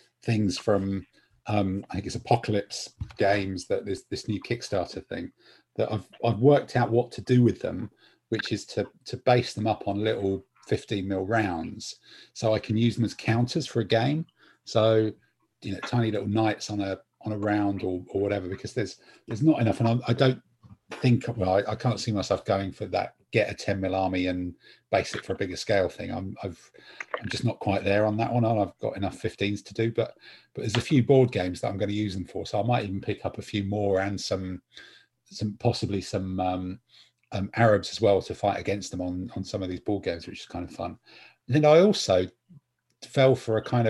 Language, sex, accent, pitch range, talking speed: English, male, British, 100-120 Hz, 225 wpm